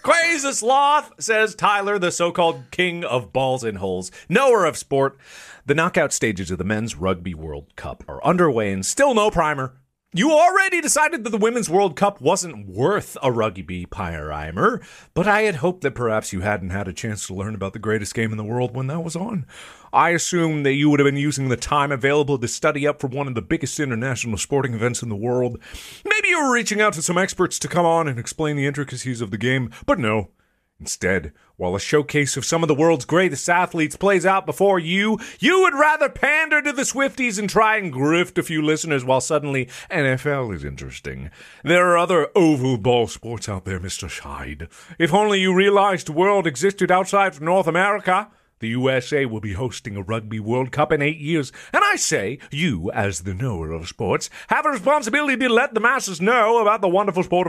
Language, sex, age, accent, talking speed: English, male, 30-49, American, 210 wpm